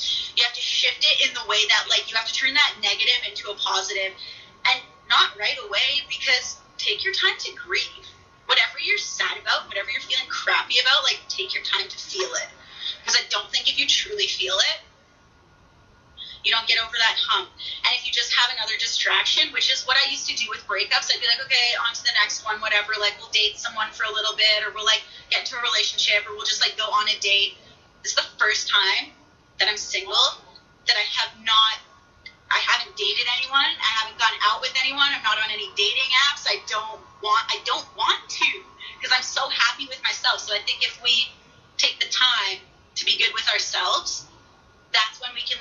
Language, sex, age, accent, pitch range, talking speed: English, female, 20-39, American, 205-280 Hz, 220 wpm